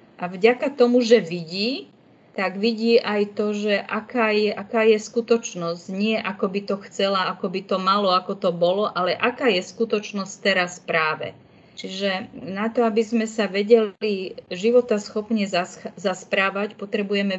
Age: 30-49